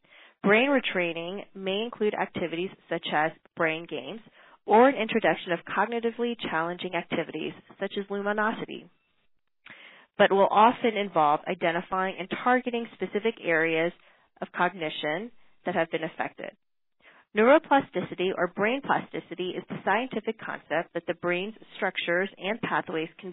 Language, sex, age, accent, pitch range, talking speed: English, female, 30-49, American, 170-205 Hz, 125 wpm